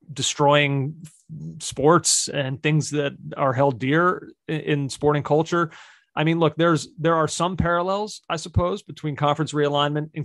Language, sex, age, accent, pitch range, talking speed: English, male, 30-49, American, 135-160 Hz, 145 wpm